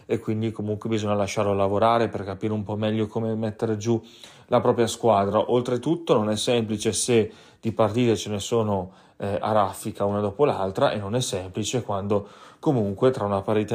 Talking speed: 185 wpm